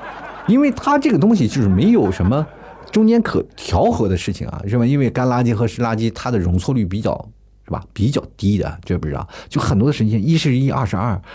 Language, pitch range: Chinese, 95-140 Hz